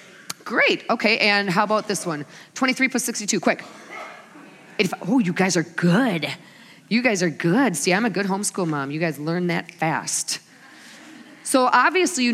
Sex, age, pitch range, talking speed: female, 40-59, 175-245 Hz, 165 wpm